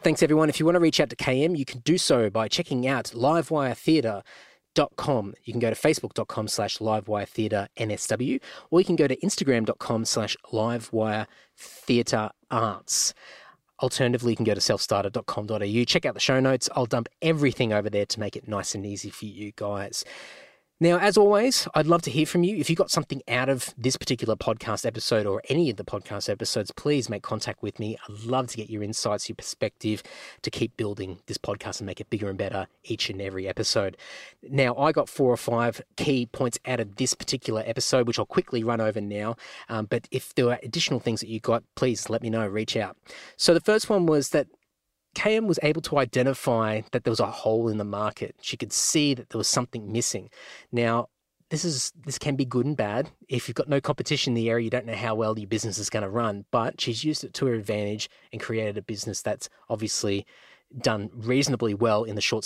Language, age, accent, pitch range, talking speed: English, 20-39, Australian, 110-135 Hz, 210 wpm